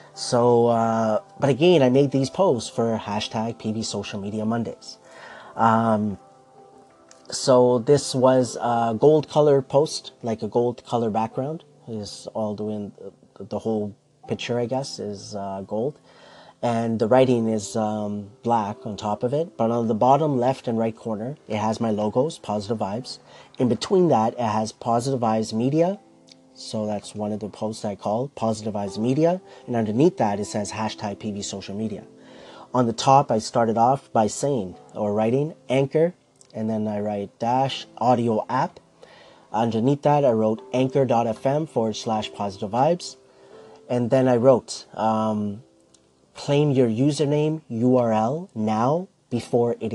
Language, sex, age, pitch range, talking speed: English, male, 30-49, 105-130 Hz, 155 wpm